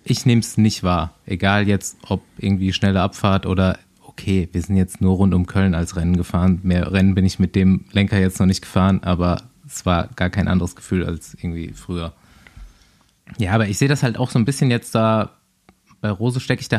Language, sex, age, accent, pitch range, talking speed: German, male, 20-39, German, 95-115 Hz, 220 wpm